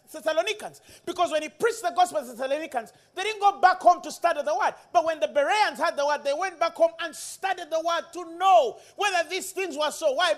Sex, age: male, 40-59